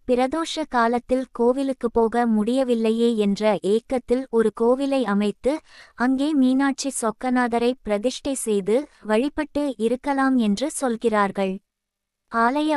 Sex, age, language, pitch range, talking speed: female, 20-39, Tamil, 220-260 Hz, 95 wpm